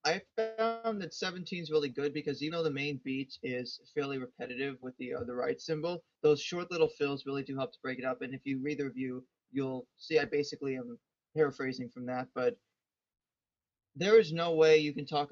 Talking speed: 215 wpm